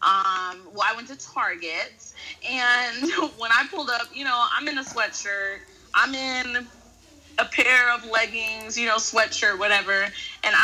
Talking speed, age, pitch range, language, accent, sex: 160 wpm, 20-39, 220-285 Hz, English, American, female